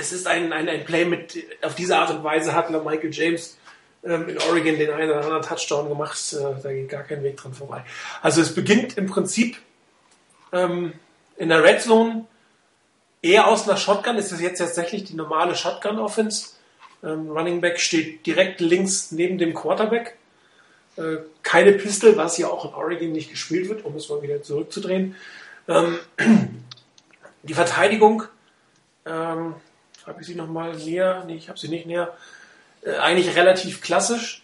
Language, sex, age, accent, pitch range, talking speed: German, male, 40-59, German, 155-185 Hz, 170 wpm